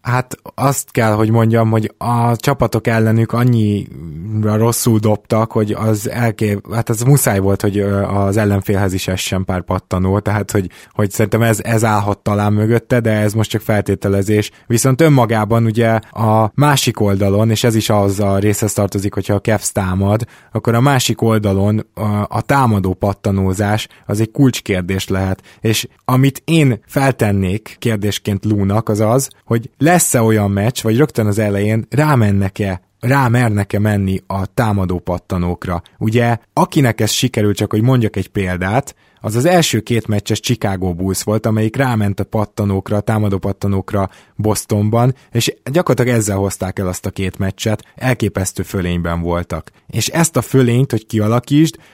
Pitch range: 100-120 Hz